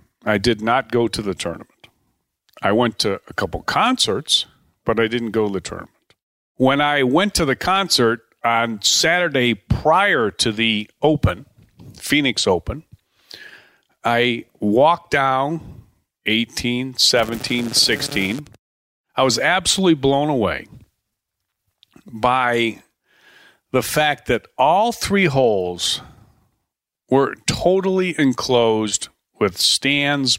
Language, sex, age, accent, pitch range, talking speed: English, male, 50-69, American, 105-135 Hz, 115 wpm